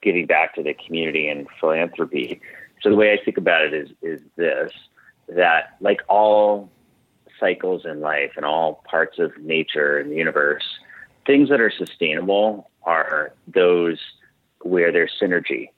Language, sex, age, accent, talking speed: English, male, 30-49, American, 150 wpm